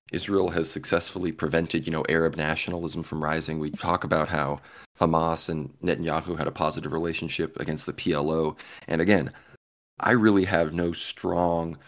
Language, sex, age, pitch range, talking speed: English, male, 20-39, 80-85 Hz, 155 wpm